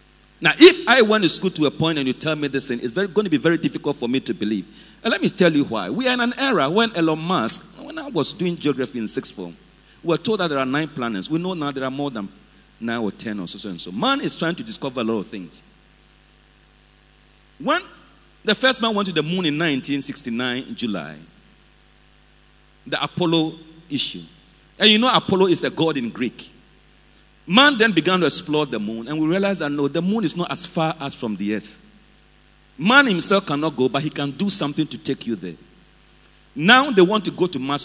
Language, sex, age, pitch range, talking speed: English, male, 40-59, 130-195 Hz, 230 wpm